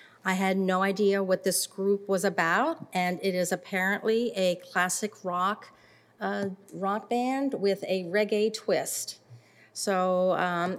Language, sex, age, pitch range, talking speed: English, female, 40-59, 180-205 Hz, 140 wpm